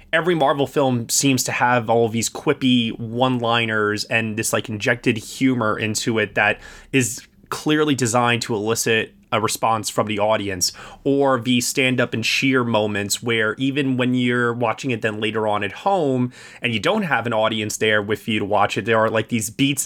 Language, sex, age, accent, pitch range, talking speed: English, male, 20-39, American, 110-135 Hz, 190 wpm